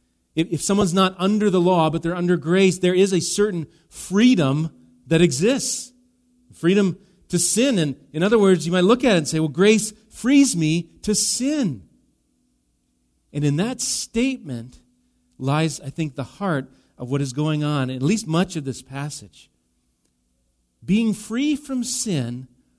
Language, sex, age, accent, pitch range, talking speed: English, male, 40-59, American, 120-180 Hz, 160 wpm